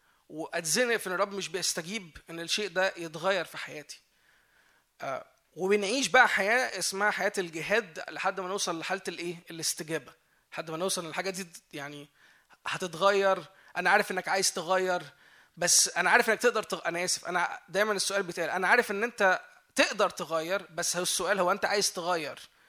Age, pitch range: 20-39, 165-200 Hz